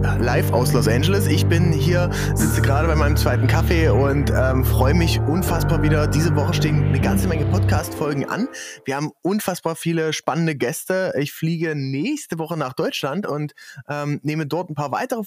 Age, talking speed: 20-39, 180 wpm